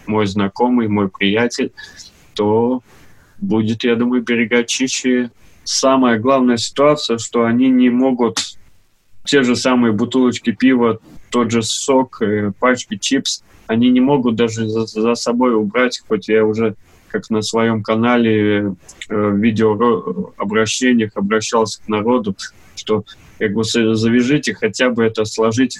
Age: 20-39